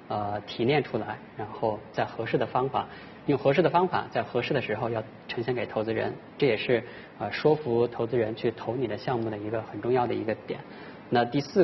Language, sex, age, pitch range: Chinese, male, 20-39, 110-140 Hz